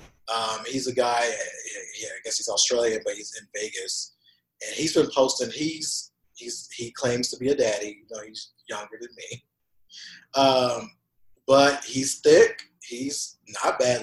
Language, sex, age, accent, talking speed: English, male, 30-49, American, 160 wpm